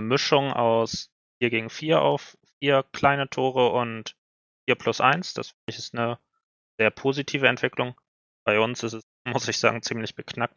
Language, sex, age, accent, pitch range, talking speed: German, male, 20-39, German, 115-130 Hz, 170 wpm